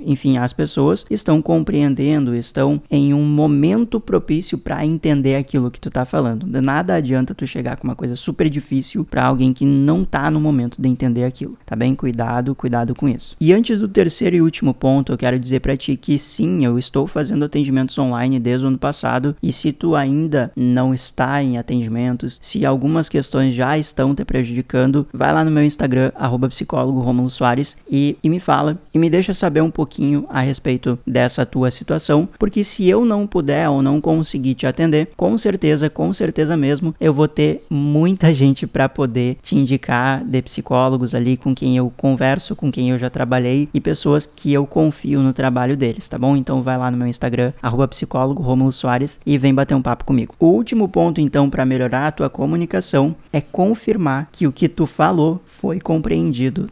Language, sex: Portuguese, male